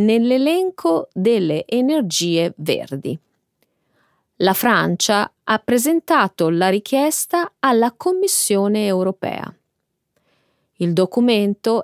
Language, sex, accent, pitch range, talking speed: Italian, female, native, 180-290 Hz, 75 wpm